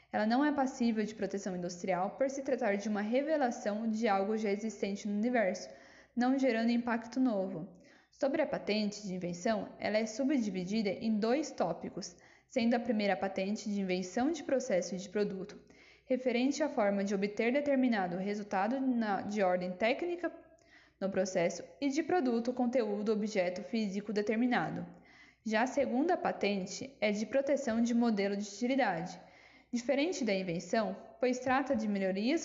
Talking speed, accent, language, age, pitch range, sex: 150 wpm, Brazilian, Portuguese, 10-29, 200-260 Hz, female